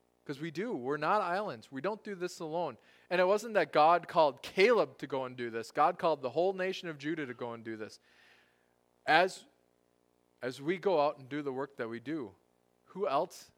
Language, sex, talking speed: English, male, 215 wpm